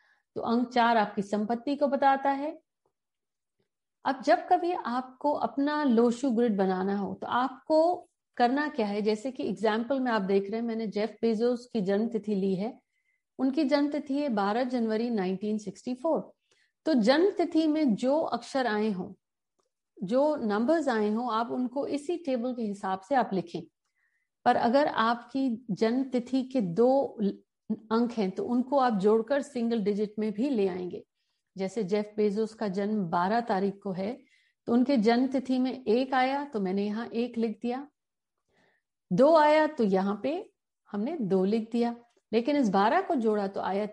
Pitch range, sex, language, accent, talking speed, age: 210-270 Hz, female, Hindi, native, 165 wpm, 50-69